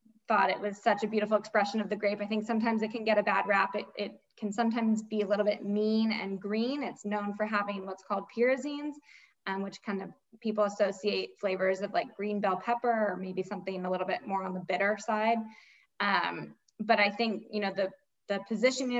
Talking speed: 220 wpm